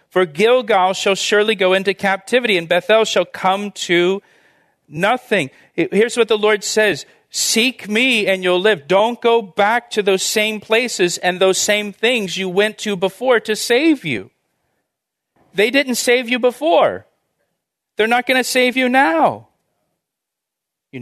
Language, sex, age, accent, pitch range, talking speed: English, male, 40-59, American, 140-210 Hz, 155 wpm